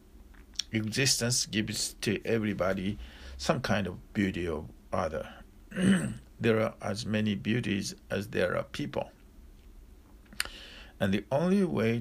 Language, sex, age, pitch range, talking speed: English, male, 50-69, 75-110 Hz, 115 wpm